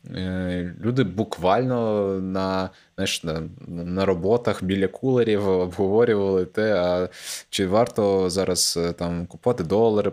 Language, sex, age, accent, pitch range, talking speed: Ukrainian, male, 20-39, native, 85-105 Hz, 95 wpm